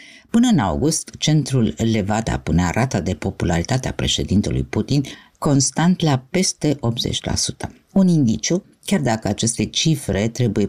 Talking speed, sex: 125 wpm, female